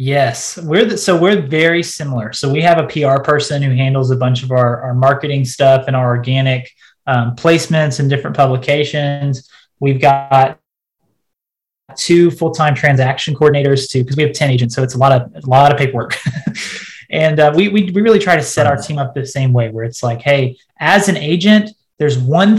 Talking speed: 200 wpm